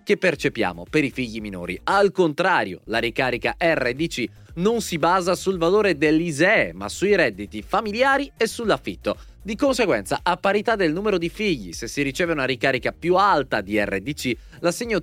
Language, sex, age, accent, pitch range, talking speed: Italian, male, 20-39, native, 130-200 Hz, 165 wpm